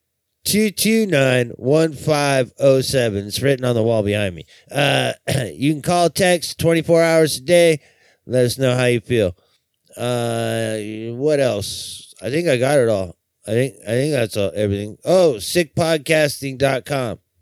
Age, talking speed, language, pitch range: 30-49, 145 wpm, English, 120-165 Hz